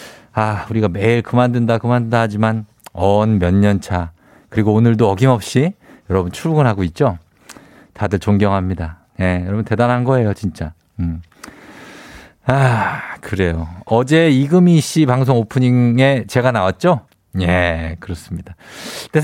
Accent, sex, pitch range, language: native, male, 100-165 Hz, Korean